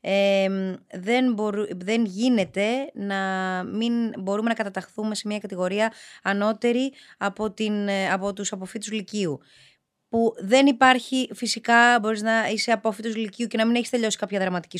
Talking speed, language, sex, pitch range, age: 150 wpm, Greek, female, 185-240 Hz, 20-39